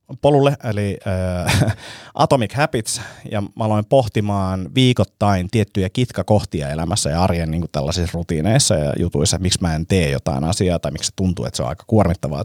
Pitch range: 90-110 Hz